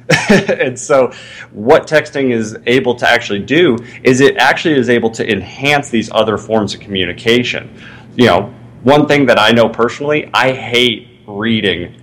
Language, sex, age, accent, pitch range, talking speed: English, male, 30-49, American, 100-120 Hz, 160 wpm